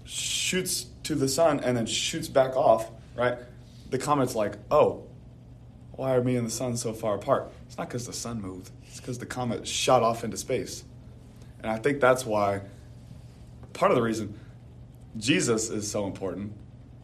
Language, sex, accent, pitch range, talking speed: English, male, American, 110-130 Hz, 175 wpm